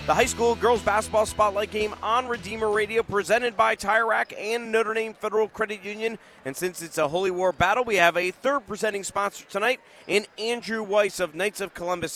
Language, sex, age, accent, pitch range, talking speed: English, male, 30-49, American, 185-225 Hz, 195 wpm